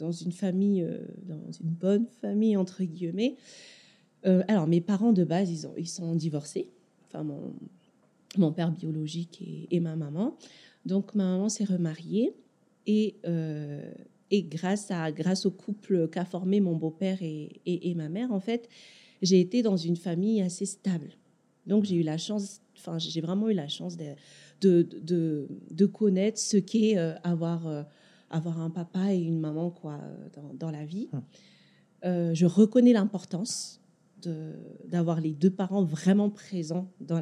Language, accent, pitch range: French, French, 165-205 Hz